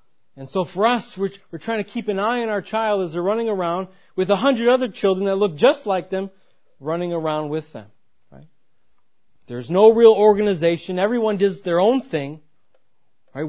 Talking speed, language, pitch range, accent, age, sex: 190 wpm, English, 165-225 Hz, American, 30-49, male